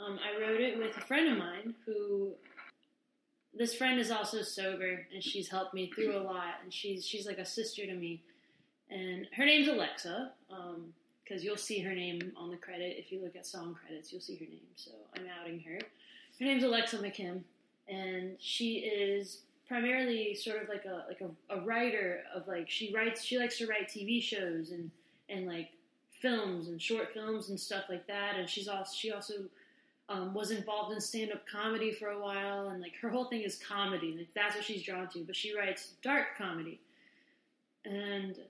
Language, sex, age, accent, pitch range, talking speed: English, female, 20-39, American, 185-235 Hz, 200 wpm